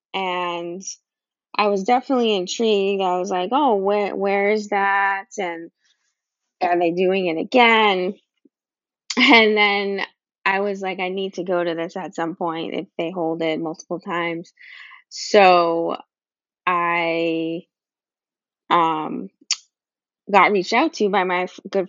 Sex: female